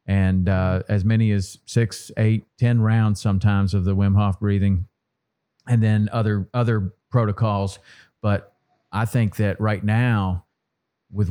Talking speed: 145 wpm